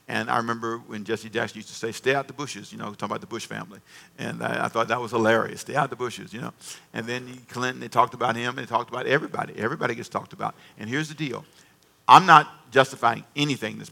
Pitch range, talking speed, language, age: 115-135 Hz, 255 wpm, English, 50-69